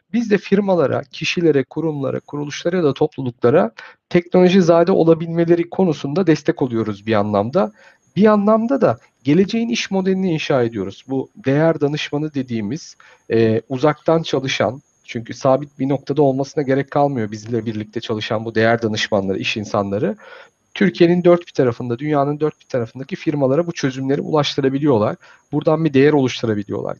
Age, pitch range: 50-69, 135-175 Hz